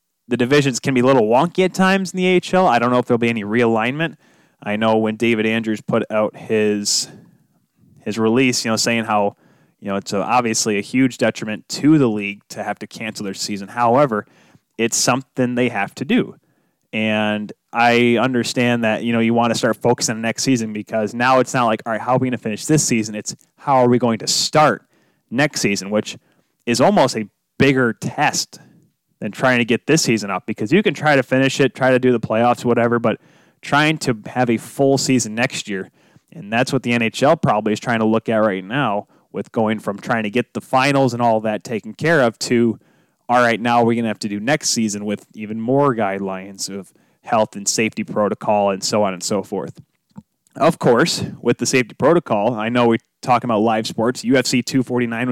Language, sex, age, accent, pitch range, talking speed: English, male, 20-39, American, 110-130 Hz, 215 wpm